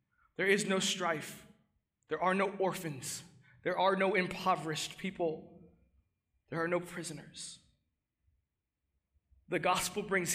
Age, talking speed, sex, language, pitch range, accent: 20-39, 115 wpm, male, English, 145-180 Hz, American